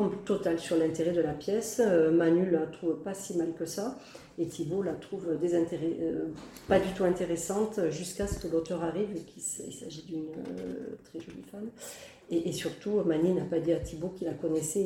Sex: female